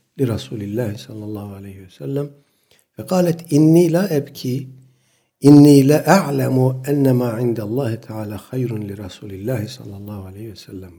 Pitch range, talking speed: 110-140 Hz, 140 wpm